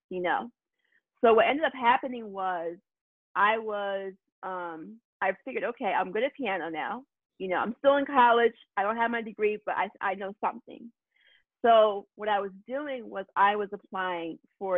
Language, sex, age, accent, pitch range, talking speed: English, female, 30-49, American, 185-235 Hz, 185 wpm